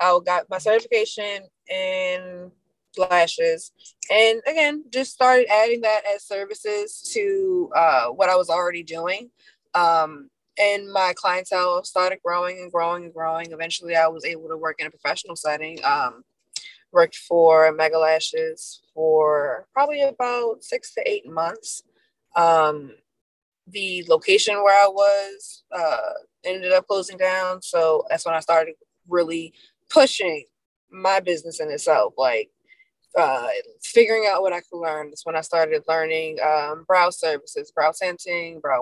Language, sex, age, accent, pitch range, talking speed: English, female, 20-39, American, 165-270 Hz, 145 wpm